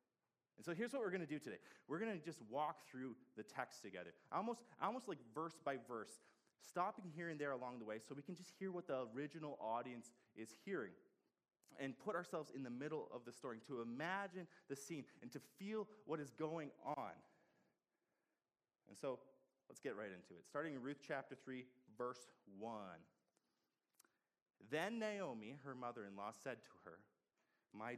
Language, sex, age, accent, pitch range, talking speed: English, male, 30-49, American, 115-165 Hz, 180 wpm